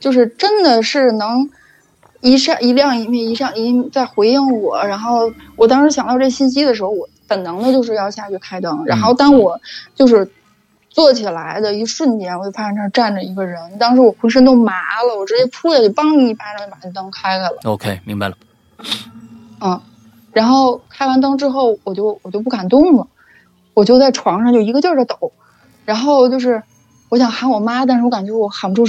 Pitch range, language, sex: 195-255 Hz, Chinese, female